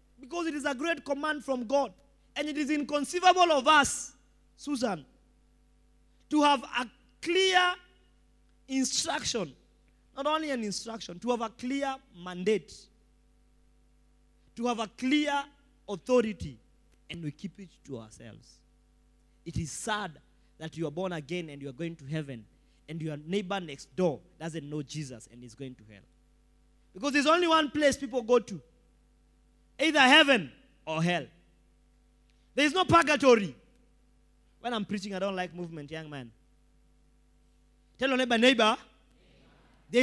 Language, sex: English, male